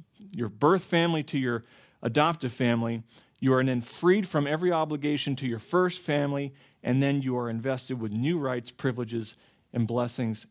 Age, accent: 40-59, American